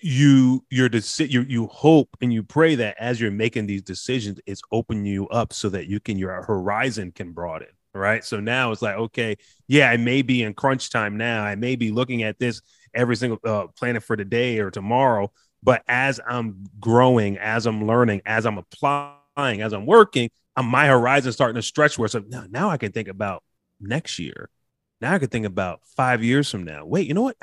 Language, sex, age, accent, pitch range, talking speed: English, male, 30-49, American, 105-130 Hz, 210 wpm